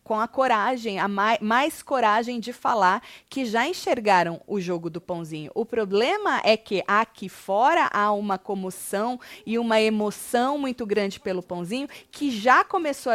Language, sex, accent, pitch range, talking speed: Portuguese, female, Brazilian, 205-280 Hz, 160 wpm